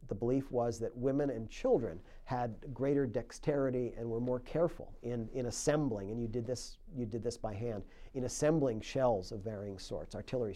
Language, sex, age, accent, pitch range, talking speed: English, male, 50-69, American, 105-125 Hz, 190 wpm